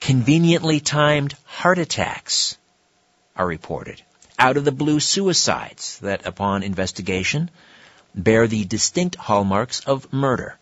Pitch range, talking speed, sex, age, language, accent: 95-135 Hz, 95 wpm, male, 50-69, English, American